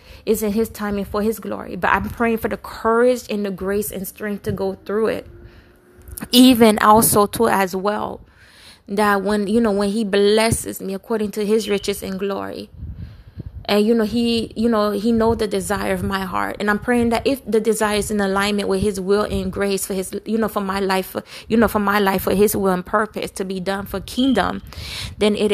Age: 20-39